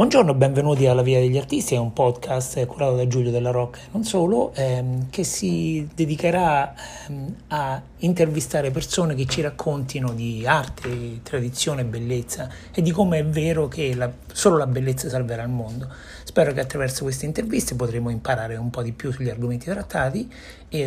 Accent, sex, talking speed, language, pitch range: native, male, 180 wpm, Italian, 120-145 Hz